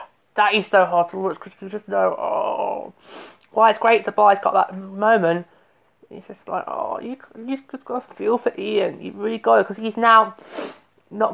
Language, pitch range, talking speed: English, 165-210 Hz, 205 wpm